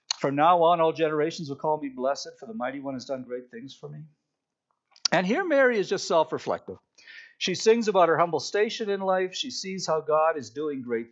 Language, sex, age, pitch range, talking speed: English, male, 50-69, 150-220 Hz, 215 wpm